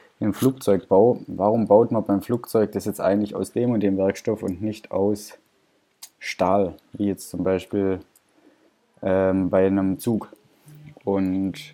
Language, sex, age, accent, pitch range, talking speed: German, male, 20-39, German, 95-125 Hz, 145 wpm